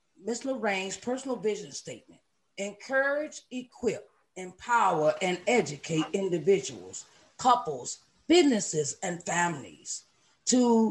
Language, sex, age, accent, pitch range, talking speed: English, female, 40-59, American, 160-235 Hz, 90 wpm